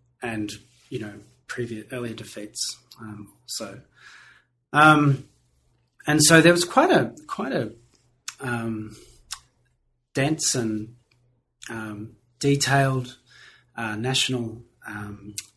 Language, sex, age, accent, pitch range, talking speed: English, male, 30-49, Australian, 115-130 Hz, 95 wpm